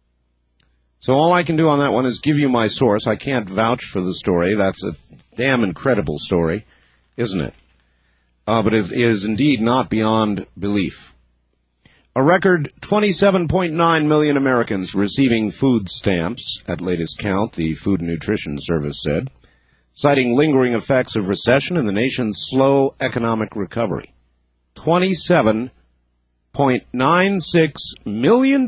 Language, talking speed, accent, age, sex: English, 135 wpm, American, 50-69, male